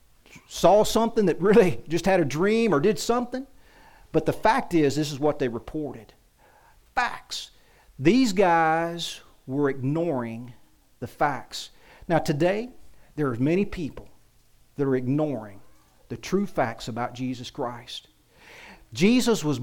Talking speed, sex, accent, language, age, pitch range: 135 wpm, male, American, English, 40-59, 140-210 Hz